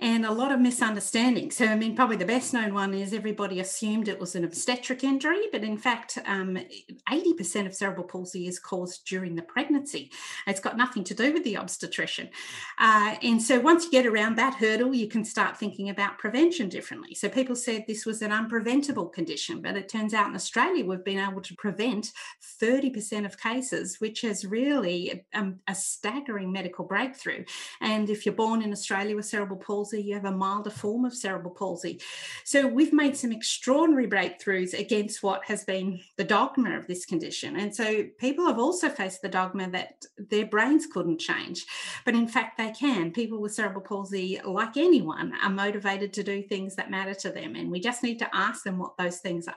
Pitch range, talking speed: 195-245 Hz, 195 wpm